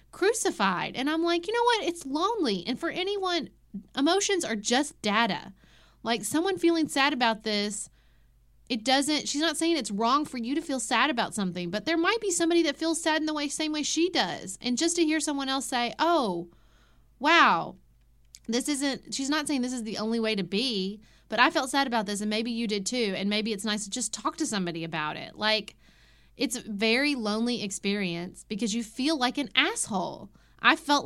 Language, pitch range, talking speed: English, 210-295 Hz, 210 wpm